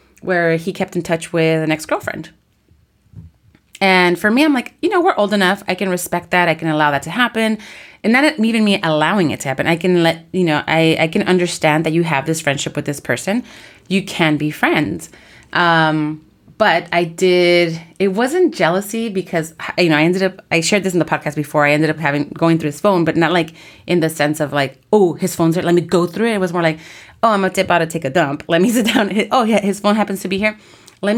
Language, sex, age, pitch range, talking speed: English, female, 30-49, 160-200 Hz, 245 wpm